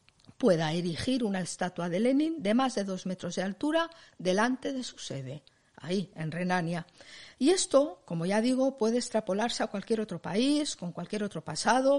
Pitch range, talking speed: 175-240 Hz, 175 wpm